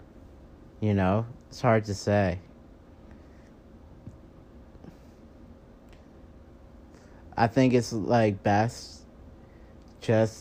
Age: 30-49